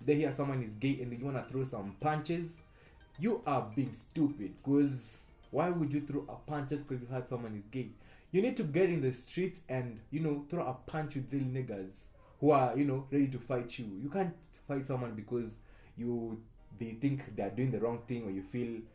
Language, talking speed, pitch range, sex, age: English, 225 wpm, 110-140 Hz, male, 20-39